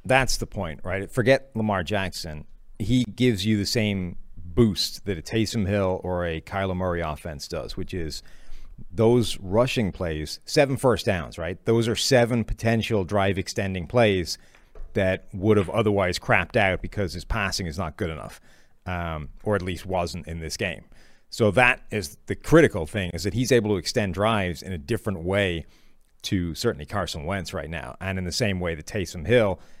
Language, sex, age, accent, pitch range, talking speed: English, male, 40-59, American, 90-110 Hz, 180 wpm